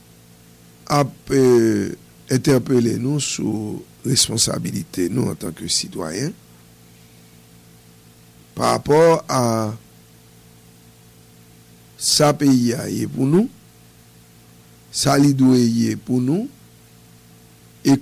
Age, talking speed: 50-69, 75 wpm